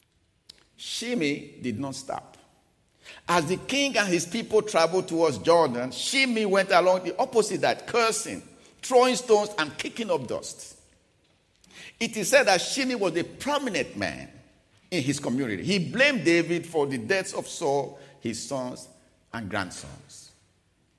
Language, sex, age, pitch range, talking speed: English, male, 50-69, 140-225 Hz, 145 wpm